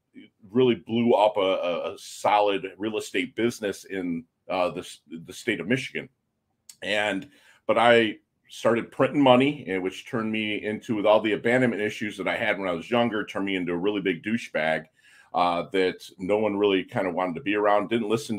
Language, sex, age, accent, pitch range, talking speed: English, male, 40-59, American, 95-120 Hz, 195 wpm